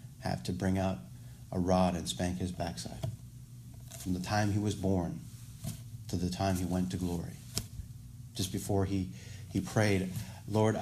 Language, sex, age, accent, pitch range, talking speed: English, male, 40-59, American, 95-125 Hz, 160 wpm